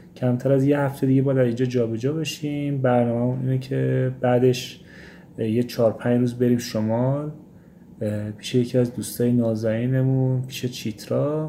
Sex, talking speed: male, 140 wpm